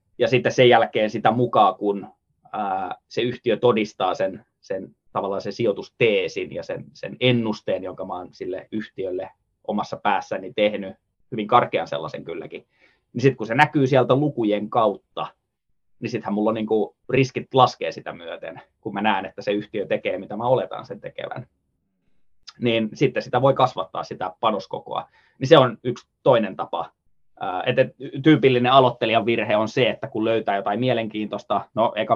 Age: 20-39